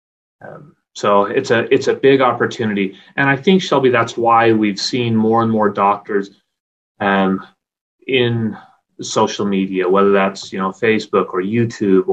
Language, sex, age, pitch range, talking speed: English, male, 30-49, 95-120 Hz, 155 wpm